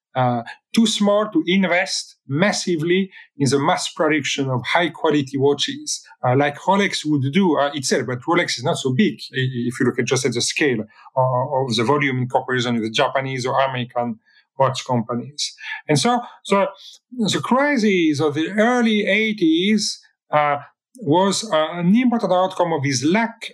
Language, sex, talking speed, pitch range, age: English, male, 170 wpm, 130-180 Hz, 40-59